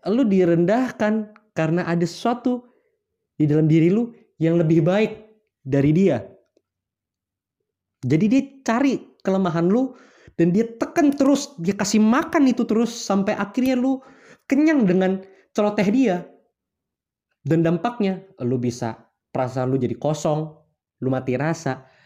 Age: 20-39